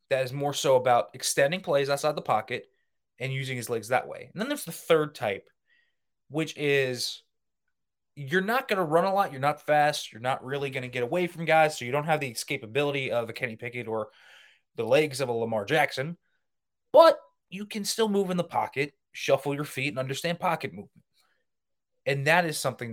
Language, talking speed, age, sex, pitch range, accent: English, 205 wpm, 20-39, male, 130-175 Hz, American